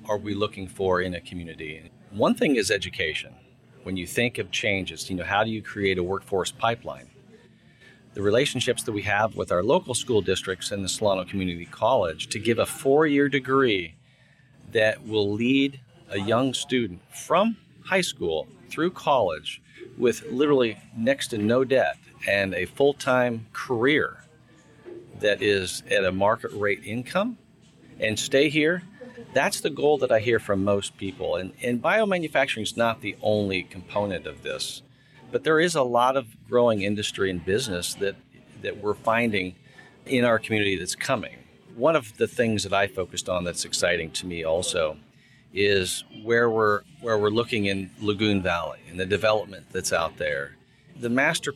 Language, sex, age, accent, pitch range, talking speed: English, male, 40-59, American, 95-130 Hz, 170 wpm